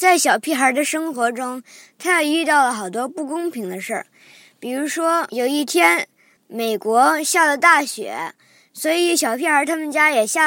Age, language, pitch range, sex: 20-39, Chinese, 235-320 Hz, male